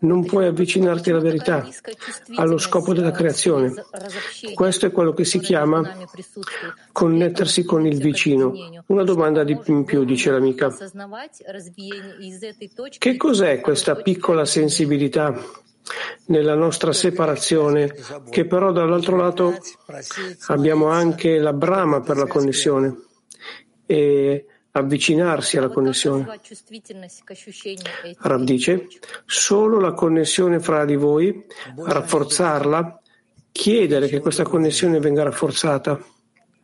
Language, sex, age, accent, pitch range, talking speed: Italian, male, 50-69, native, 155-195 Hz, 105 wpm